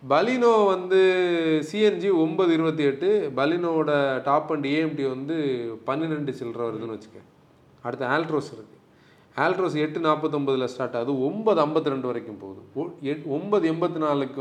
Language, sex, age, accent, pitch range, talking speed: Tamil, male, 30-49, native, 130-175 Hz, 130 wpm